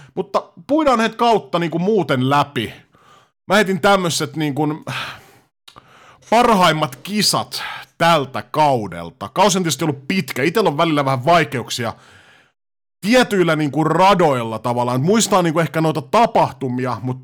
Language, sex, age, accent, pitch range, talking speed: Finnish, male, 30-49, native, 120-170 Hz, 130 wpm